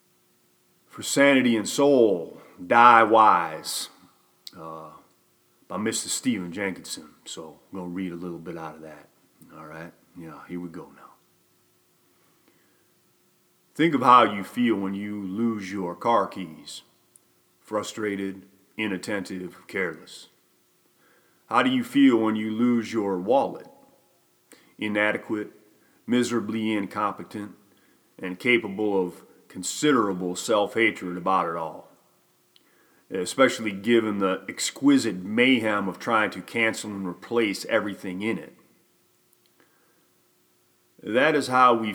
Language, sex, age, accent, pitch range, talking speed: English, male, 40-59, American, 90-110 Hz, 115 wpm